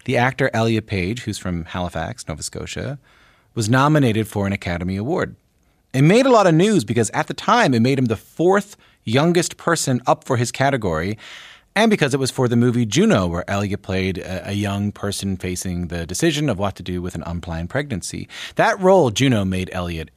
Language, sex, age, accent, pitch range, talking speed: English, male, 30-49, American, 95-135 Hz, 195 wpm